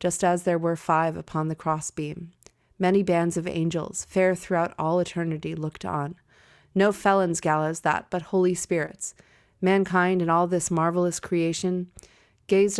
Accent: American